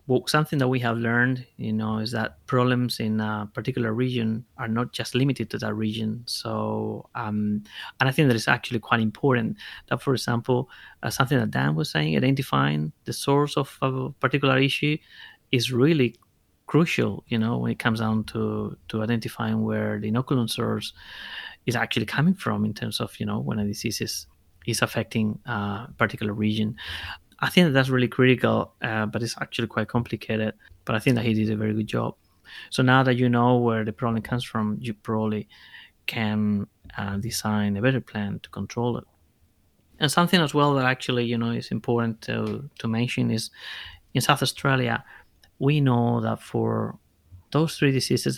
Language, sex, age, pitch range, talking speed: English, male, 30-49, 110-125 Hz, 185 wpm